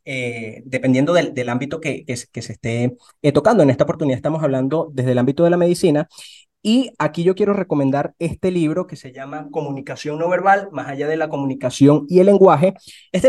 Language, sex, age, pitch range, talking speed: Spanish, male, 20-39, 140-185 Hz, 205 wpm